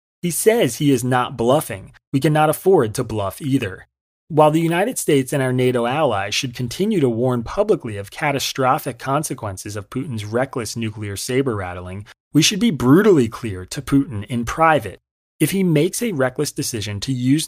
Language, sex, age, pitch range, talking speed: English, male, 30-49, 110-145 Hz, 170 wpm